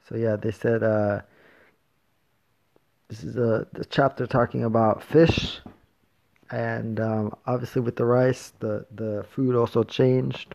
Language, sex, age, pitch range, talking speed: English, male, 20-39, 105-120 Hz, 130 wpm